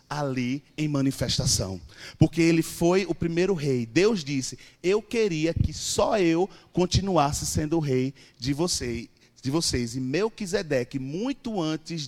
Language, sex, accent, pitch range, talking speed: Portuguese, male, Brazilian, 130-175 Hz, 140 wpm